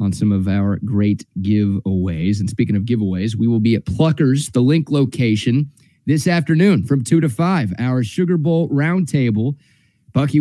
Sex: male